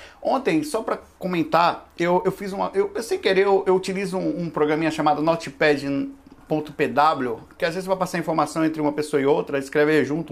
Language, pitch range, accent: Portuguese, 155-200 Hz, Brazilian